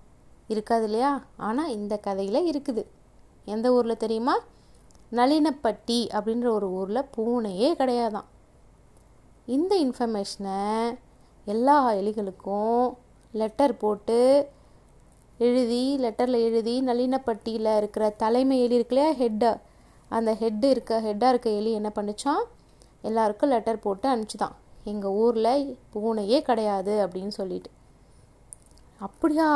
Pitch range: 220-265 Hz